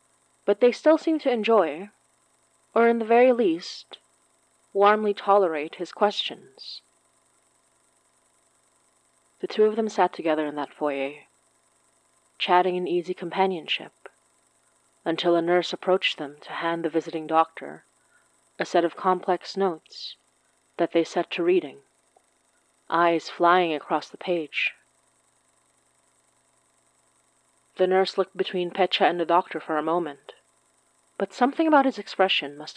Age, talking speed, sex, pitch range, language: 30-49, 130 wpm, female, 160-190 Hz, English